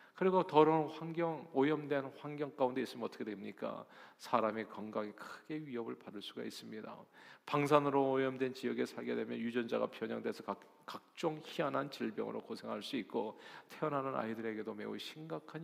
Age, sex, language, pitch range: 40-59, male, Korean, 115-150 Hz